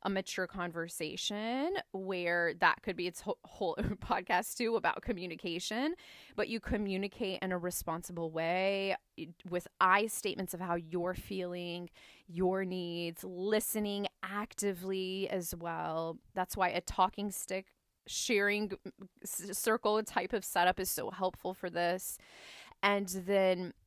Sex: female